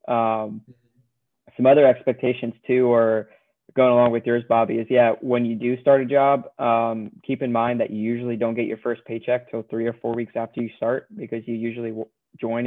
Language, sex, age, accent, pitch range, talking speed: English, male, 20-39, American, 115-125 Hz, 210 wpm